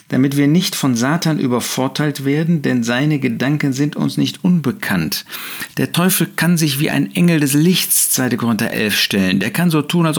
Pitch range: 125-160 Hz